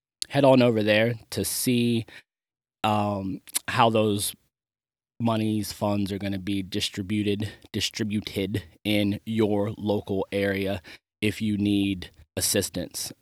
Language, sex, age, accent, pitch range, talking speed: English, male, 20-39, American, 100-115 Hz, 110 wpm